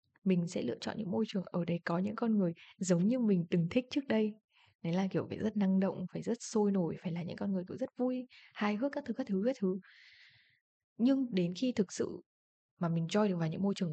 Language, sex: Vietnamese, female